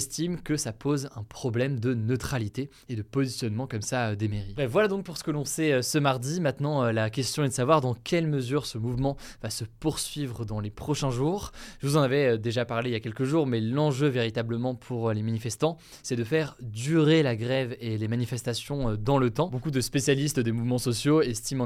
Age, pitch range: 20-39, 120-145 Hz